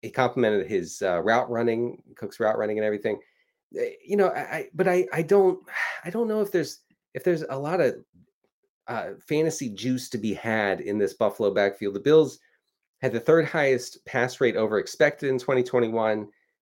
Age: 30-49